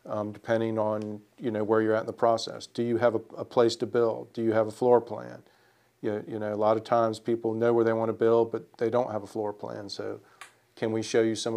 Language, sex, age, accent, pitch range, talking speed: English, male, 40-59, American, 110-115 Hz, 270 wpm